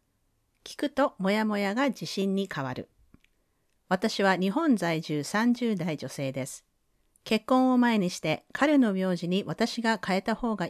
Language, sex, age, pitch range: Japanese, female, 40-59, 165-235 Hz